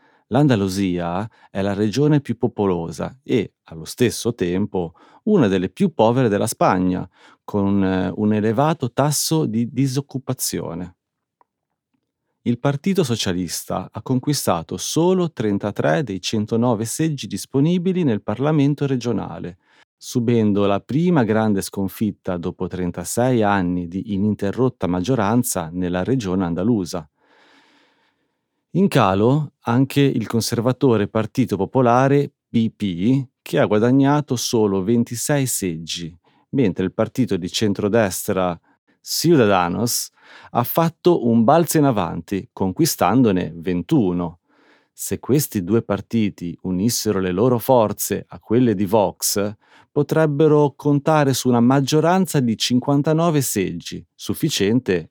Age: 40-59